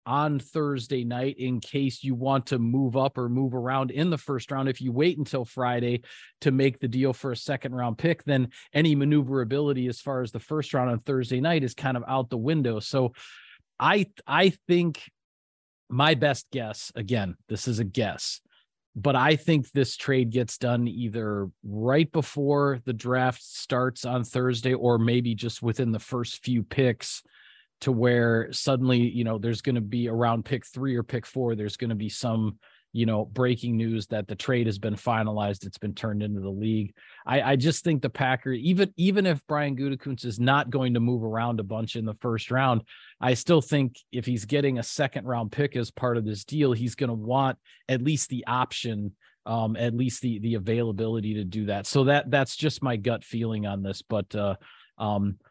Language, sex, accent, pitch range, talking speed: English, male, American, 115-135 Hz, 200 wpm